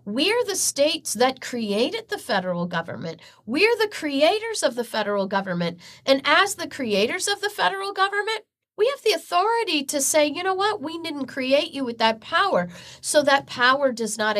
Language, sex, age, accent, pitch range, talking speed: English, female, 40-59, American, 200-310 Hz, 185 wpm